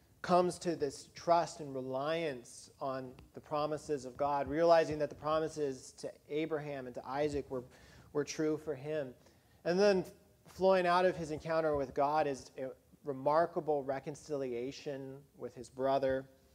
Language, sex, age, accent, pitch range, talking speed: English, male, 40-59, American, 135-165 Hz, 150 wpm